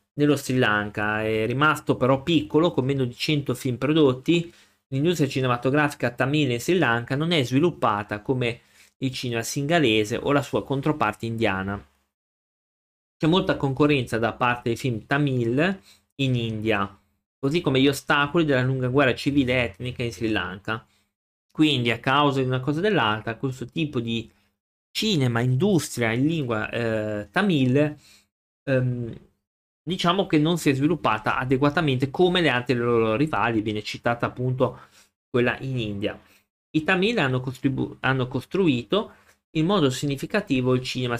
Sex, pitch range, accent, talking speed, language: male, 115-150 Hz, native, 145 wpm, Italian